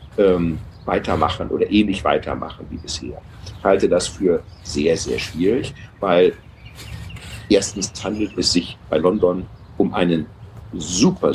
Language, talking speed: German, 125 wpm